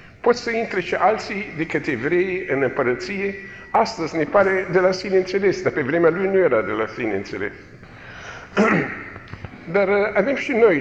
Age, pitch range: 50-69, 150-205 Hz